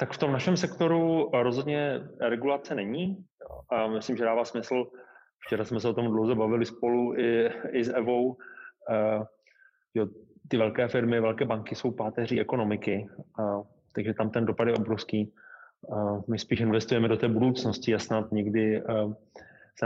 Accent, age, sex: native, 20-39, male